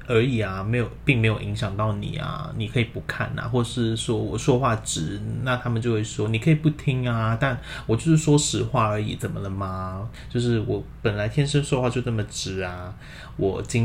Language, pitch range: Chinese, 105-130 Hz